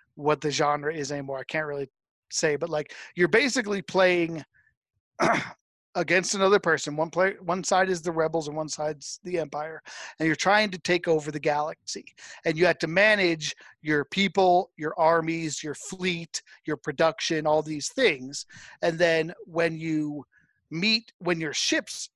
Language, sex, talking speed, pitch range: English, male, 165 wpm, 155-185 Hz